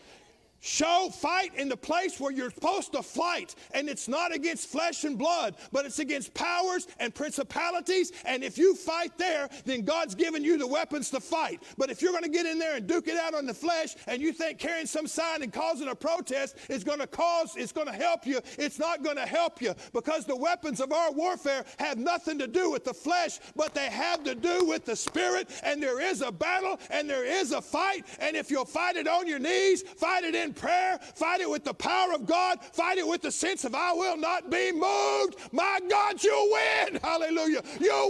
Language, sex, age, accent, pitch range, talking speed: English, male, 50-69, American, 255-345 Hz, 225 wpm